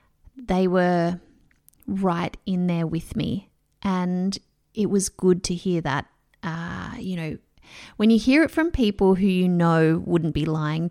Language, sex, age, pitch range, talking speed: English, female, 30-49, 180-220 Hz, 160 wpm